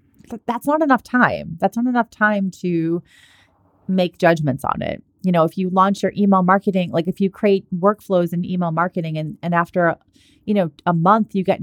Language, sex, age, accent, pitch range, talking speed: English, female, 30-49, American, 165-205 Hz, 200 wpm